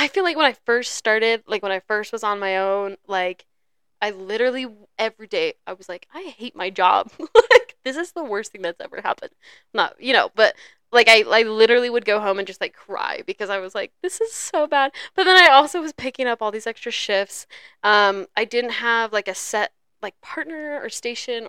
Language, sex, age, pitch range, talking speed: English, female, 10-29, 205-280 Hz, 225 wpm